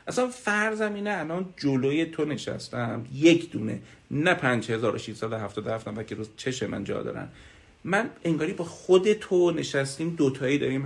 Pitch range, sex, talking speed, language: 115-150 Hz, male, 150 wpm, Persian